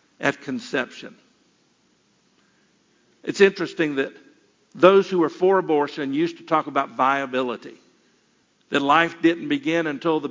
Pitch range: 140-170 Hz